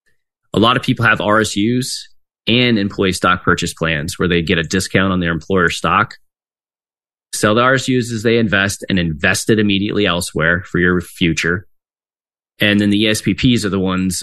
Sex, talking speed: male, 175 wpm